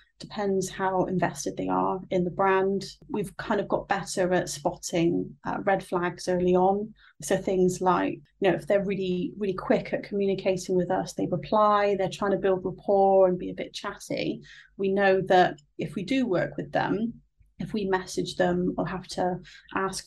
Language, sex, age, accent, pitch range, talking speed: English, female, 30-49, British, 180-210 Hz, 190 wpm